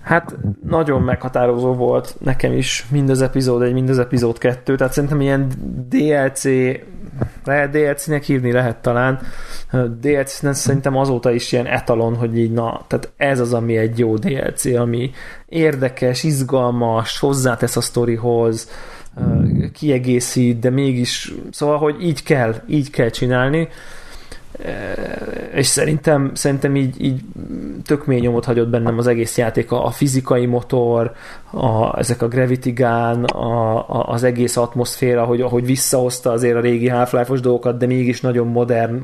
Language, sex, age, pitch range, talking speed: Hungarian, male, 20-39, 120-135 Hz, 140 wpm